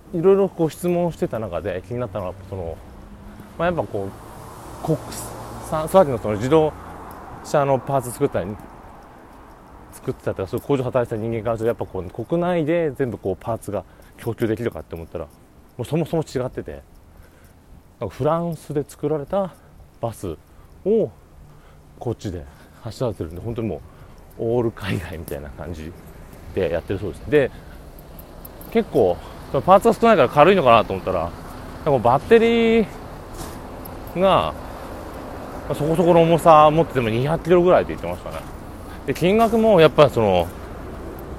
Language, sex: Japanese, male